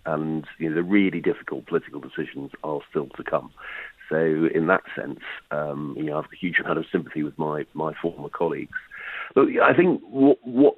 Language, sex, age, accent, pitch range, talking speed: English, male, 50-69, British, 80-95 Hz, 190 wpm